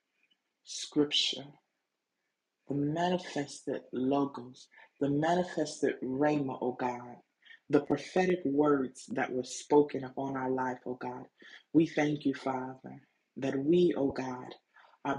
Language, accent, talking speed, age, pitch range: English, American, 115 wpm, 30-49, 130-150 Hz